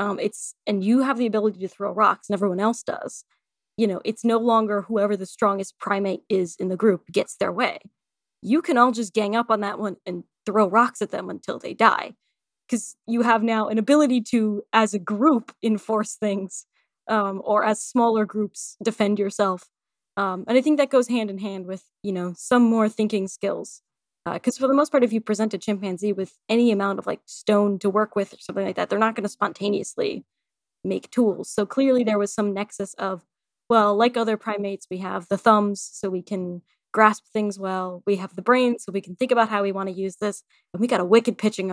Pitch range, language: 195-230 Hz, English